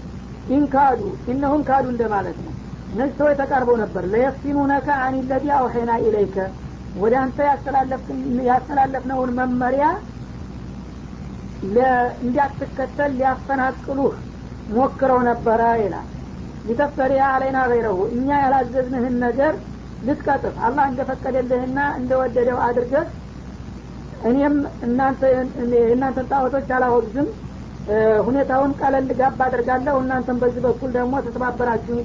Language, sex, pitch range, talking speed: Amharic, female, 240-270 Hz, 90 wpm